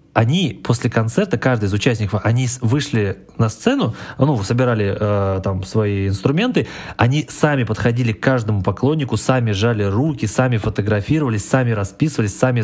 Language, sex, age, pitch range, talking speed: Russian, male, 20-39, 110-130 Hz, 140 wpm